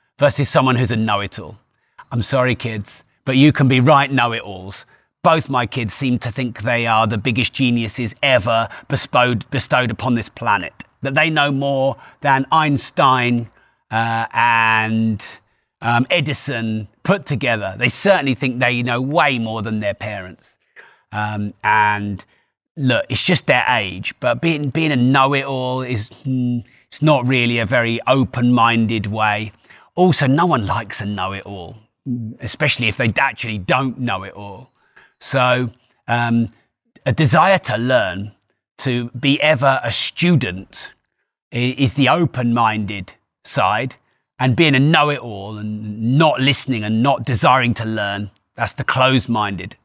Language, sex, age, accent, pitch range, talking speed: English, male, 30-49, British, 110-135 Hz, 140 wpm